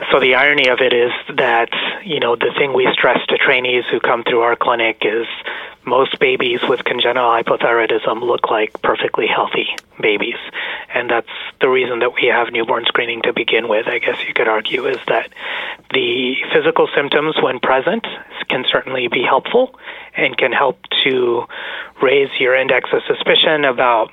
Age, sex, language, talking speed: 30-49, male, English, 170 wpm